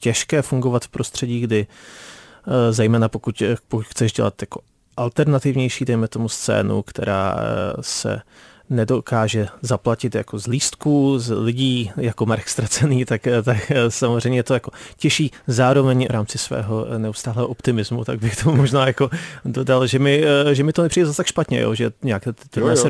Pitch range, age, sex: 110-135 Hz, 30-49, male